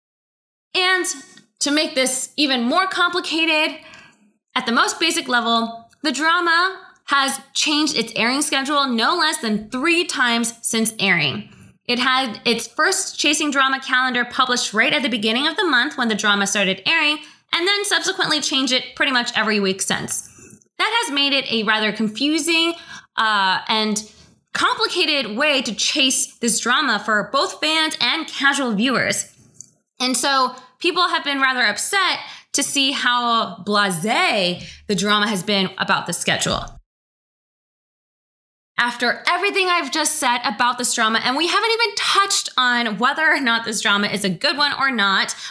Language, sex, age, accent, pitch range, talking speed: English, female, 20-39, American, 220-300 Hz, 160 wpm